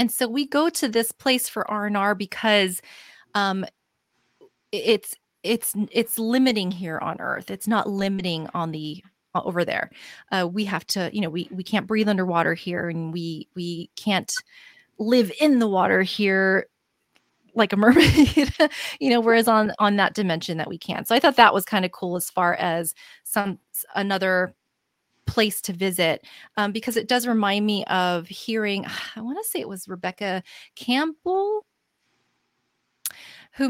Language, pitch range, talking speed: English, 180-230 Hz, 165 wpm